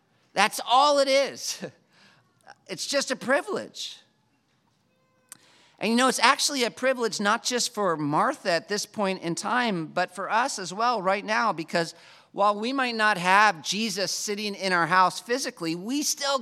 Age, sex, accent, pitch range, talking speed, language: 40-59, male, American, 185-250 Hz, 165 wpm, English